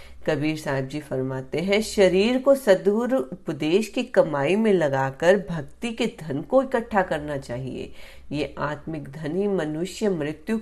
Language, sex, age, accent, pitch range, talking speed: Hindi, female, 40-59, native, 150-205 Hz, 145 wpm